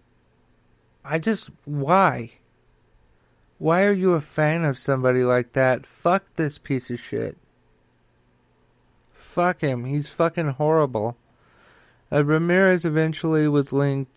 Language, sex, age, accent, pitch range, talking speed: English, male, 40-59, American, 120-135 Hz, 115 wpm